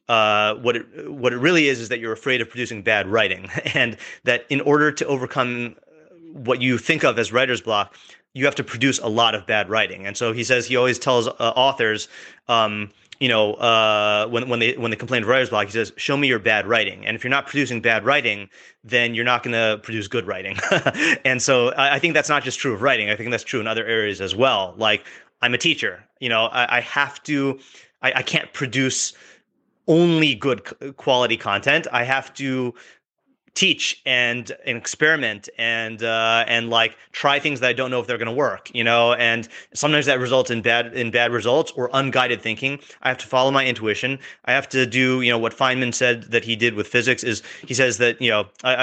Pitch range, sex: 115-135 Hz, male